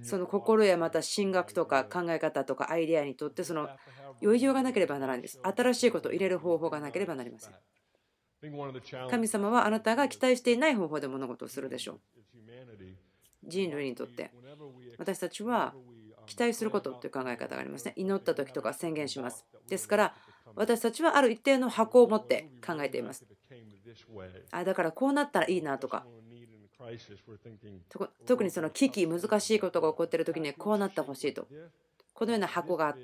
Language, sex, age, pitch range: Japanese, female, 40-59, 125-210 Hz